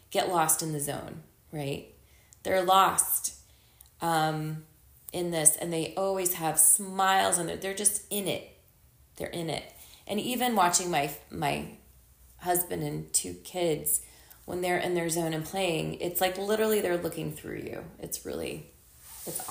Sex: female